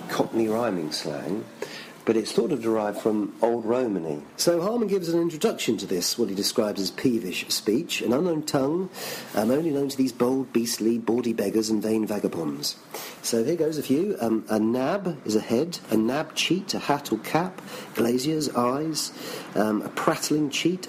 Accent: British